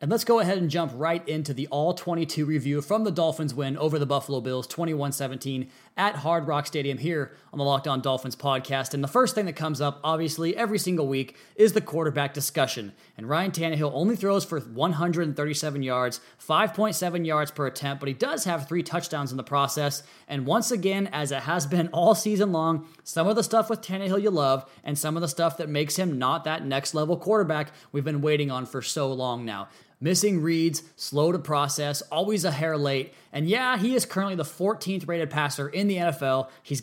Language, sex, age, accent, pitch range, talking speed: English, male, 20-39, American, 140-180 Hz, 205 wpm